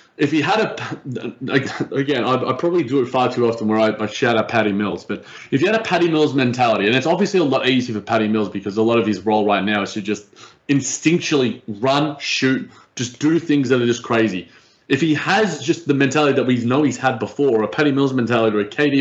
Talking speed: 235 wpm